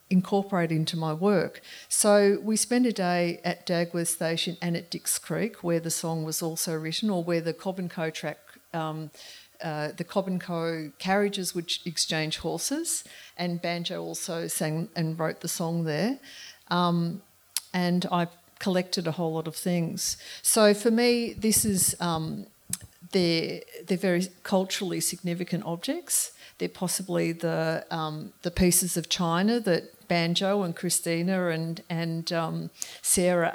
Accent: Australian